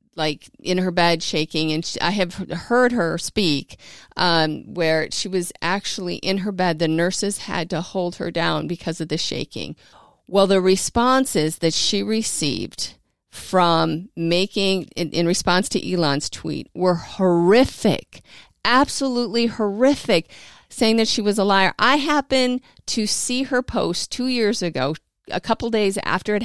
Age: 40-59